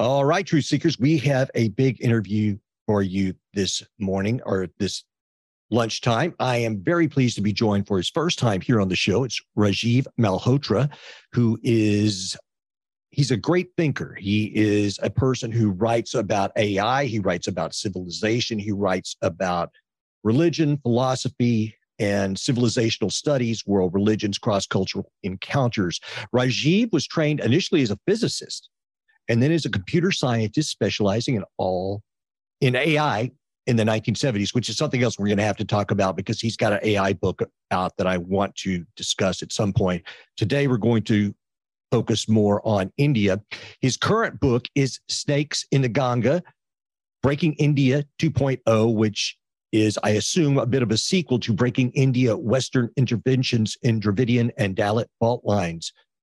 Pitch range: 105-135 Hz